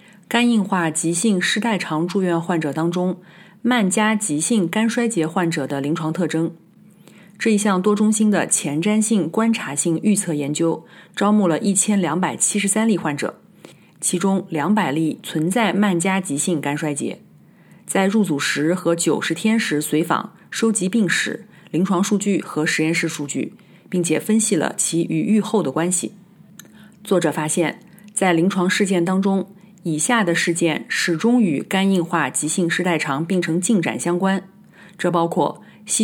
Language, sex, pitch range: Chinese, female, 165-205 Hz